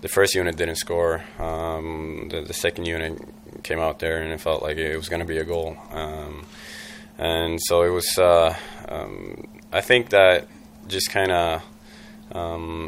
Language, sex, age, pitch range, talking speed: English, male, 20-39, 80-85 Hz, 175 wpm